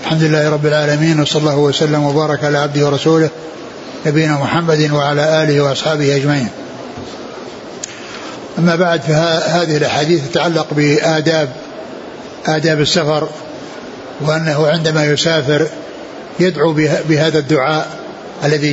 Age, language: 60-79, Arabic